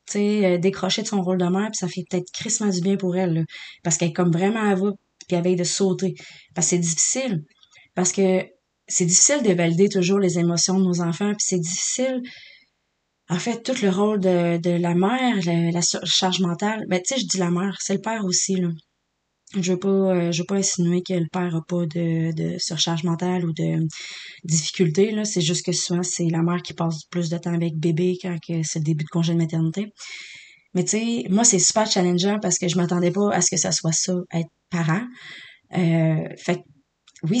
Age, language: 20-39, French